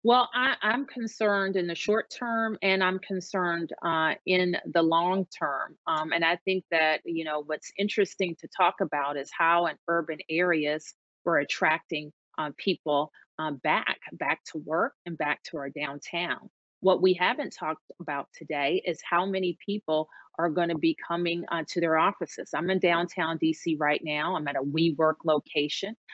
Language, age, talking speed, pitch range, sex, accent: English, 30-49, 175 wpm, 160-190 Hz, female, American